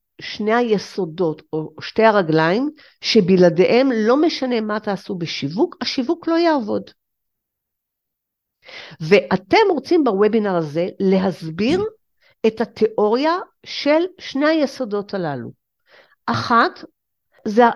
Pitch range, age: 190-290 Hz, 50-69